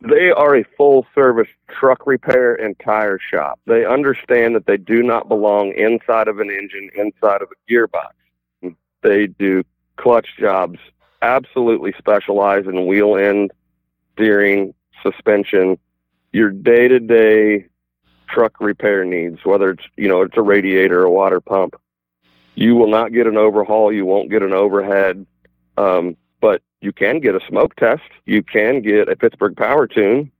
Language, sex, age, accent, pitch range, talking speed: English, male, 40-59, American, 95-110 Hz, 150 wpm